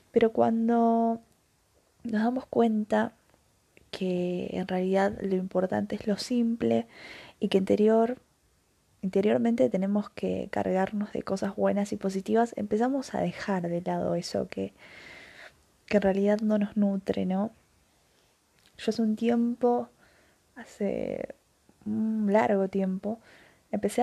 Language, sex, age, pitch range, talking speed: Spanish, female, 20-39, 185-220 Hz, 120 wpm